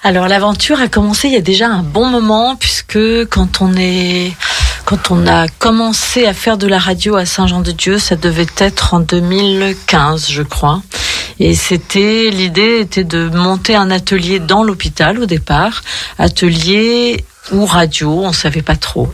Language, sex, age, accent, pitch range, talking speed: French, female, 40-59, French, 170-210 Hz, 165 wpm